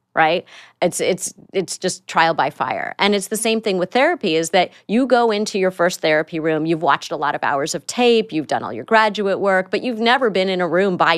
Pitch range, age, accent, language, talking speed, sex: 170-205 Hz, 30-49, American, English, 245 wpm, female